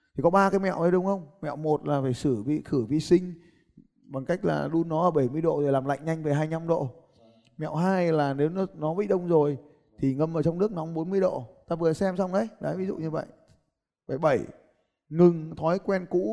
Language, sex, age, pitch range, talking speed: Vietnamese, male, 20-39, 145-185 Hz, 240 wpm